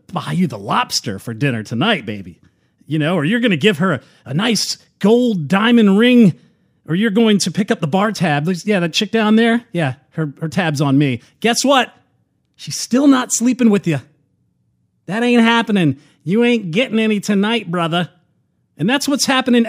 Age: 40-59